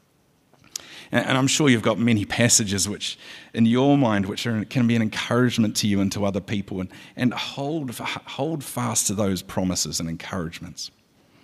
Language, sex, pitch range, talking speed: English, male, 95-120 Hz, 175 wpm